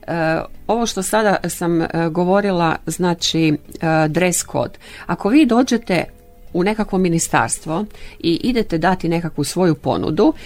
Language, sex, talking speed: Croatian, female, 130 wpm